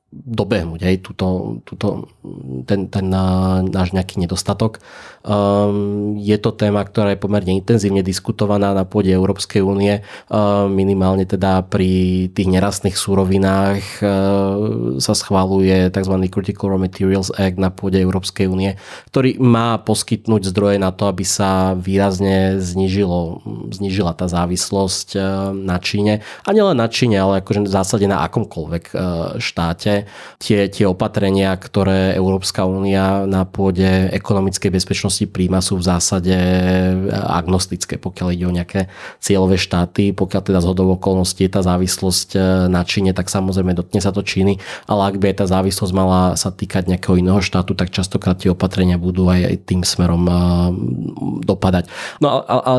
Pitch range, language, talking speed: 95-100 Hz, Slovak, 135 wpm